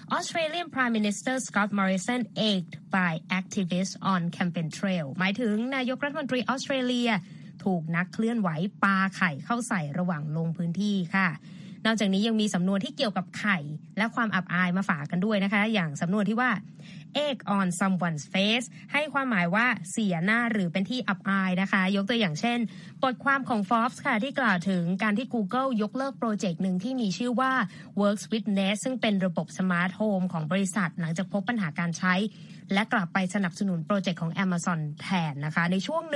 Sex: female